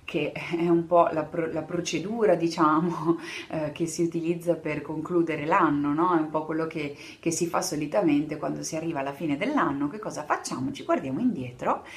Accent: native